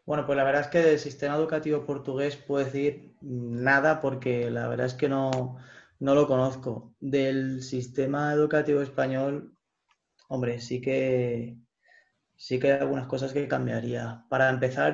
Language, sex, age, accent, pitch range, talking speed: Portuguese, male, 20-39, Spanish, 125-140 Hz, 155 wpm